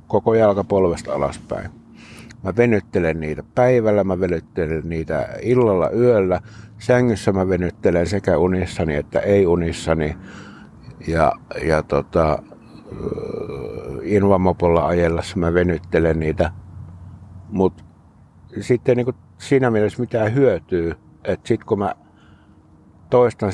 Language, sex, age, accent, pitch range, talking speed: Finnish, male, 60-79, native, 85-105 Hz, 95 wpm